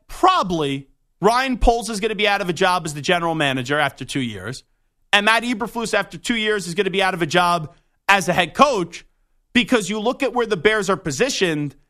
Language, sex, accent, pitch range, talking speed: English, male, American, 160-230 Hz, 225 wpm